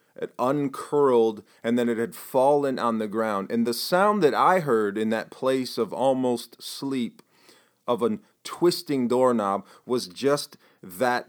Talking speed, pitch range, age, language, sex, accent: 155 wpm, 110-145 Hz, 30-49, English, male, American